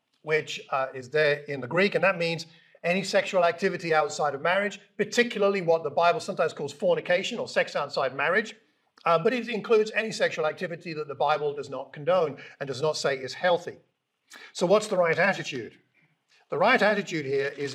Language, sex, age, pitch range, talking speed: English, male, 50-69, 145-200 Hz, 190 wpm